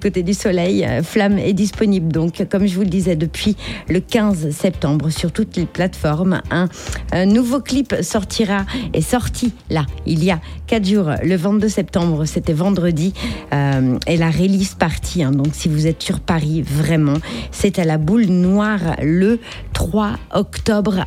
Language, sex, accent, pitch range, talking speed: French, female, French, 165-210 Hz, 165 wpm